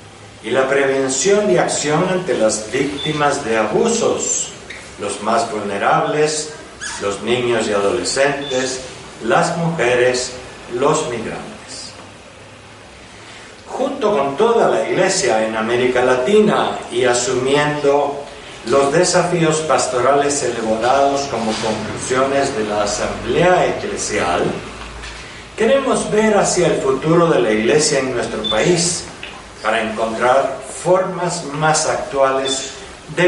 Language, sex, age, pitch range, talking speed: Spanish, male, 60-79, 120-155 Hz, 105 wpm